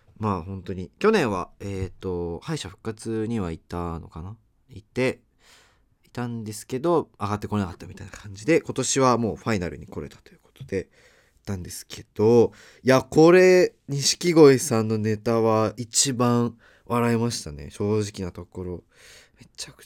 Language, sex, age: Japanese, male, 20-39